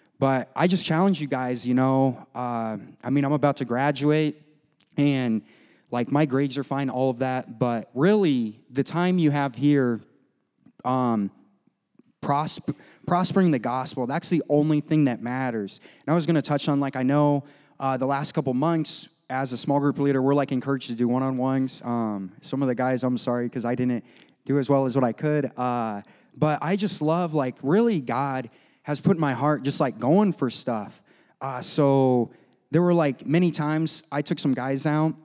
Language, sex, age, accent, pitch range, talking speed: English, male, 20-39, American, 130-165 Hz, 190 wpm